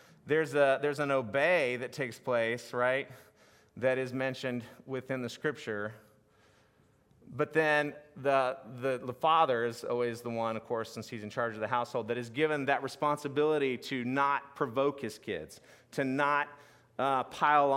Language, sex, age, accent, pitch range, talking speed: English, male, 30-49, American, 125-155 Hz, 160 wpm